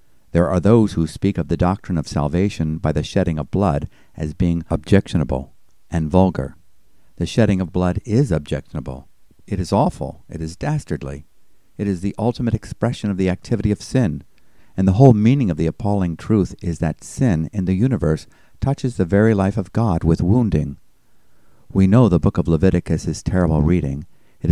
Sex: male